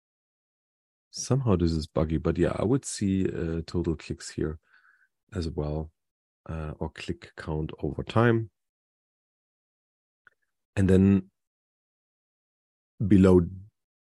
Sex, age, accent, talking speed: male, 40-59, German, 105 wpm